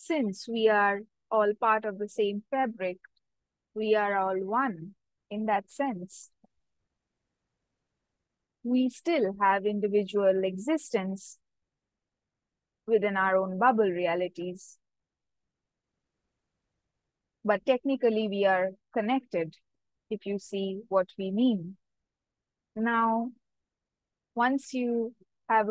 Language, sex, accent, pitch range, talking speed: English, female, Indian, 195-235 Hz, 95 wpm